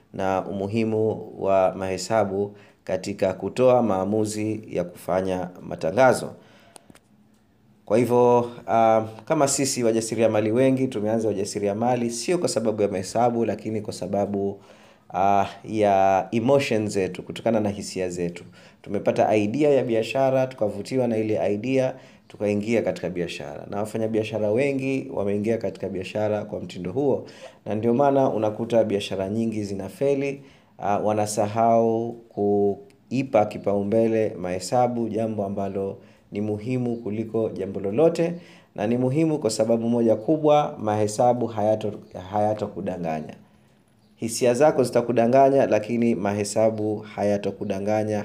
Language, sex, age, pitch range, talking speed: Swahili, male, 30-49, 100-120 Hz, 115 wpm